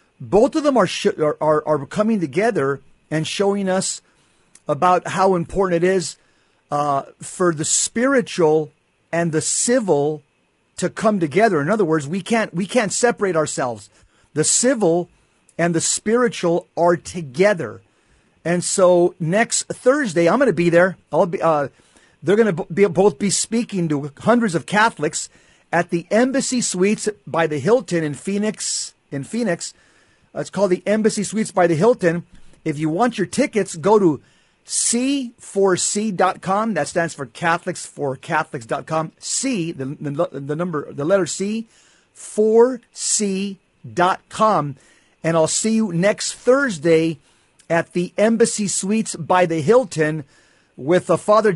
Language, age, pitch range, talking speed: English, 50-69, 160-210 Hz, 140 wpm